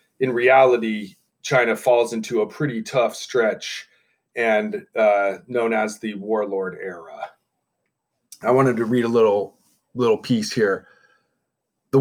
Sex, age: male, 30-49